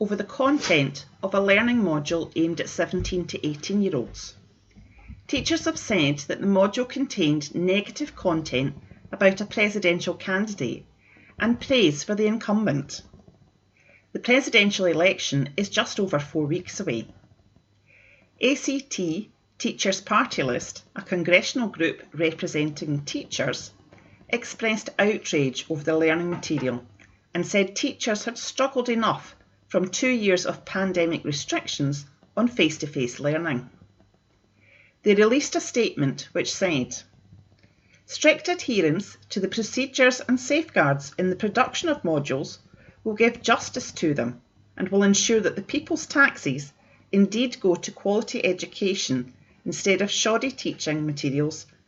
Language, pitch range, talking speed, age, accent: English, 140-220 Hz, 130 wpm, 40-59, British